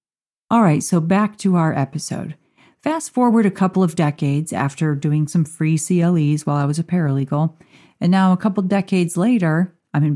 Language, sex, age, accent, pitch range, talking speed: English, female, 40-59, American, 150-195 Hz, 185 wpm